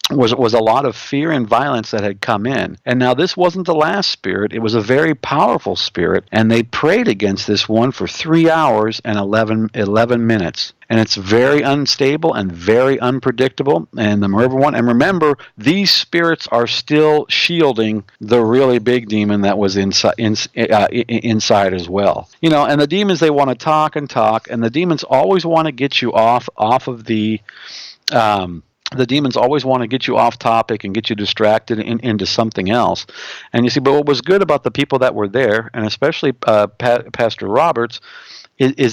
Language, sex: English, male